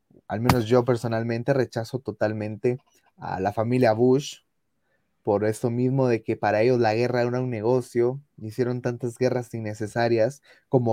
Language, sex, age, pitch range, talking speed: Spanish, male, 20-39, 115-145 Hz, 150 wpm